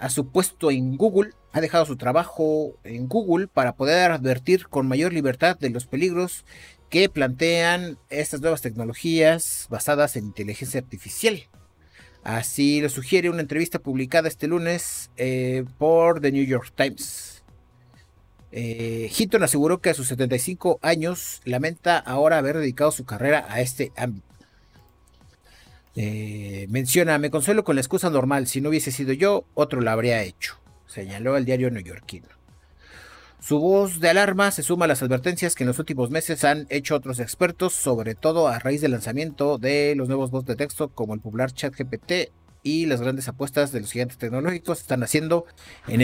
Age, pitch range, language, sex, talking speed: 50-69, 125-160 Hz, Spanish, male, 165 wpm